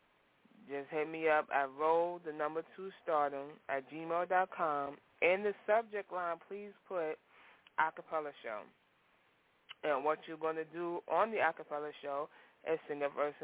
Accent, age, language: American, 20-39, English